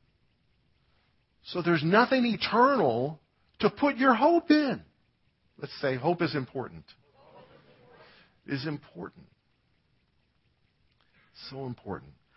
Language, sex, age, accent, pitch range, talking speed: English, male, 50-69, American, 115-155 Hz, 85 wpm